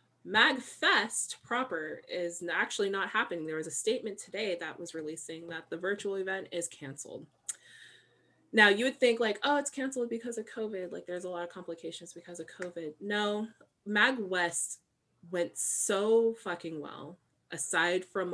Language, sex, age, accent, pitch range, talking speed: English, female, 20-39, American, 150-195 Hz, 160 wpm